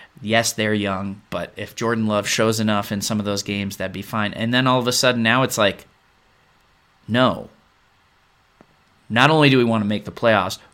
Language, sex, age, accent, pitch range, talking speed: English, male, 20-39, American, 100-125 Hz, 200 wpm